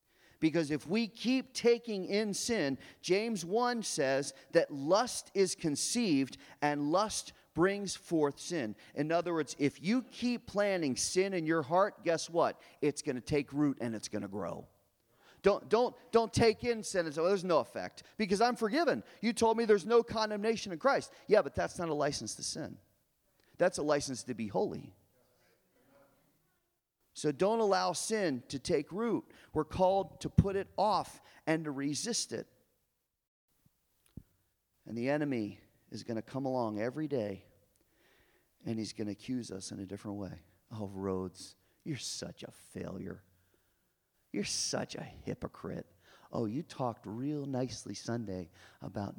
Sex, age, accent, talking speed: male, 40-59, American, 160 wpm